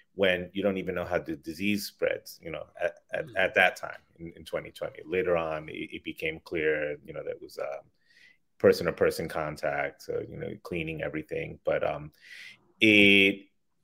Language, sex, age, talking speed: English, male, 30-49, 180 wpm